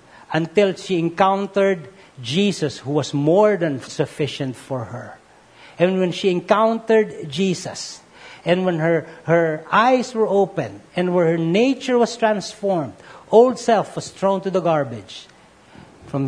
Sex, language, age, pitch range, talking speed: male, English, 50-69, 140-190 Hz, 135 wpm